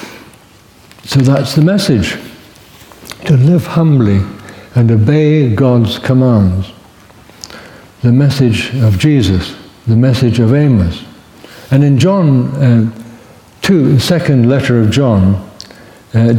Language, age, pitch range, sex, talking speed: English, 60-79, 110-150 Hz, male, 105 wpm